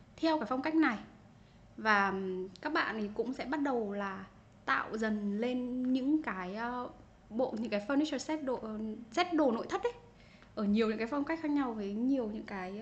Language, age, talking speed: Vietnamese, 10-29, 195 wpm